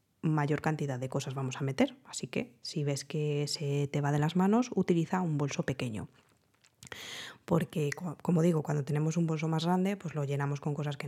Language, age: Spanish, 20-39